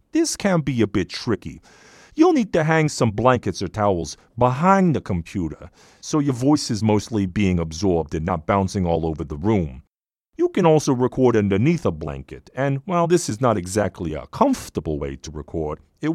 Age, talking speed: 40-59, 185 wpm